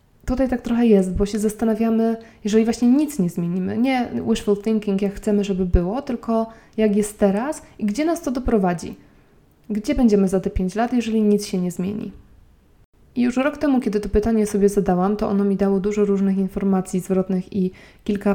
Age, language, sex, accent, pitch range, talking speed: 20-39, Polish, female, native, 195-225 Hz, 190 wpm